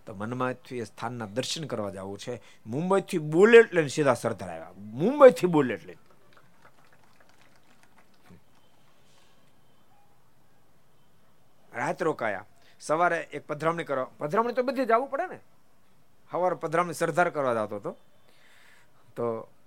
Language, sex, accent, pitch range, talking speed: Gujarati, male, native, 120-175 Hz, 120 wpm